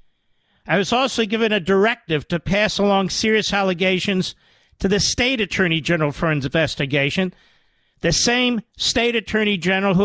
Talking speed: 150 wpm